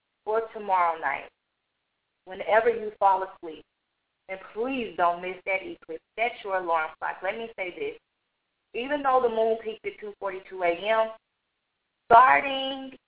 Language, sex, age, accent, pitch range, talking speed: English, female, 20-39, American, 185-235 Hz, 140 wpm